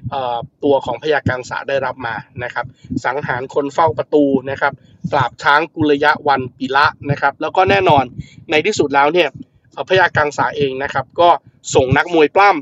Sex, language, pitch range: male, Thai, 135-165 Hz